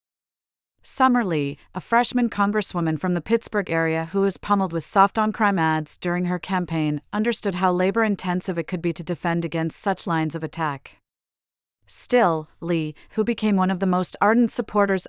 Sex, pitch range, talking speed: female, 160-200 Hz, 165 wpm